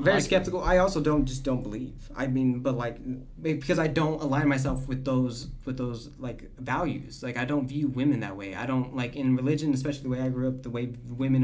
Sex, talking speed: male, 230 wpm